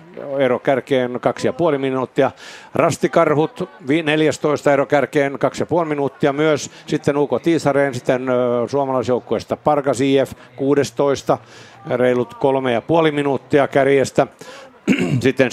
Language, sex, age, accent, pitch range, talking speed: Finnish, male, 50-69, native, 110-135 Hz, 95 wpm